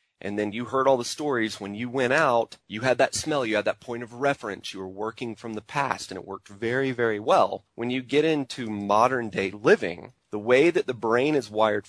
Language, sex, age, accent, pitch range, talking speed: English, male, 30-49, American, 105-130 Hz, 235 wpm